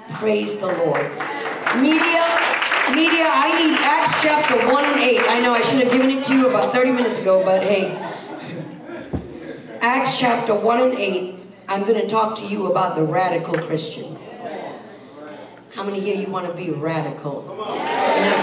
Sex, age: female, 50-69